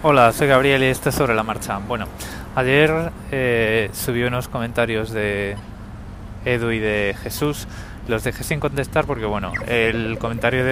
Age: 20-39